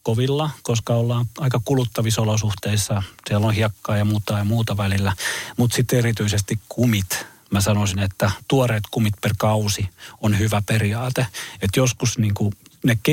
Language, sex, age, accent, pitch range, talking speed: Finnish, male, 40-59, native, 105-135 Hz, 145 wpm